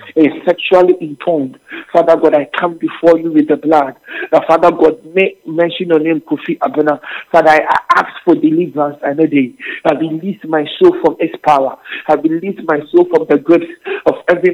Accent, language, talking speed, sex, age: Nigerian, English, 180 wpm, male, 50-69